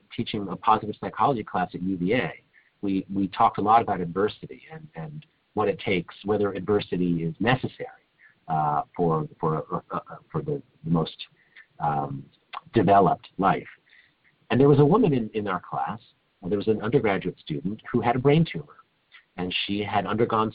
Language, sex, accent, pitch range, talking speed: English, male, American, 90-125 Hz, 170 wpm